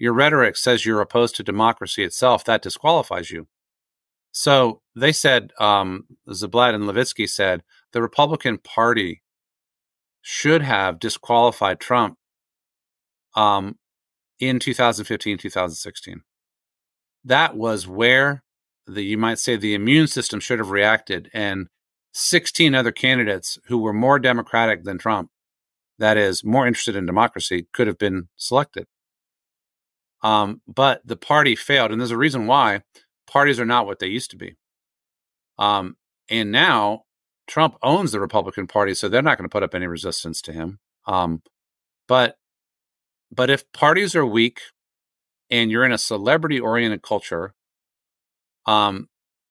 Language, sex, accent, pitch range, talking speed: English, male, American, 105-130 Hz, 140 wpm